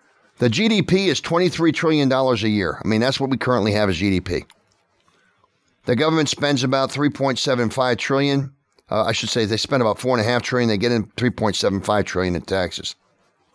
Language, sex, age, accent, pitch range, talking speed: English, male, 50-69, American, 105-145 Hz, 185 wpm